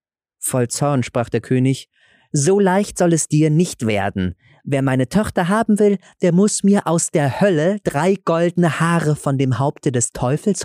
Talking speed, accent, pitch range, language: 175 wpm, German, 110-155 Hz, German